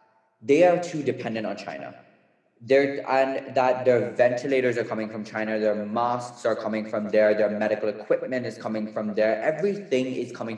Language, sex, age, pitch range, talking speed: English, male, 20-39, 110-135 Hz, 175 wpm